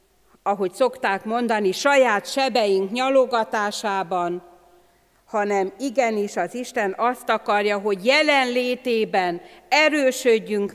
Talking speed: 85 wpm